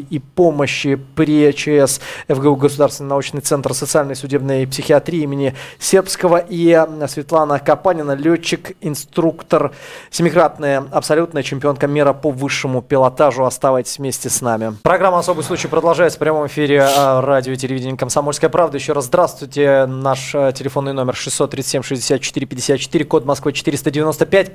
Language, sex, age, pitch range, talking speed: Russian, male, 20-39, 135-160 Hz, 125 wpm